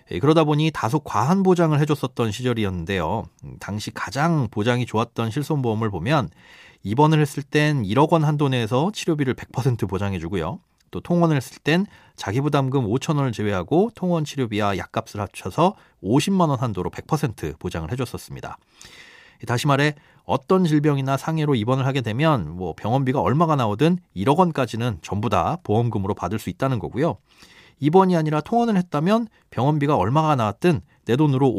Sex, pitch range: male, 110-150 Hz